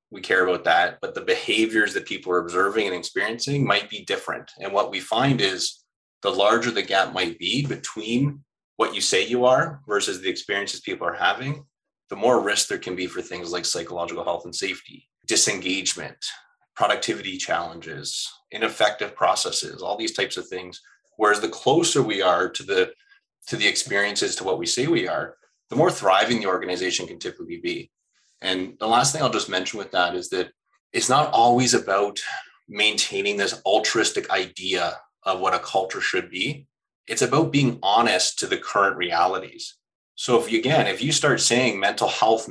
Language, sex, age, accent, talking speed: English, male, 30-49, American, 180 wpm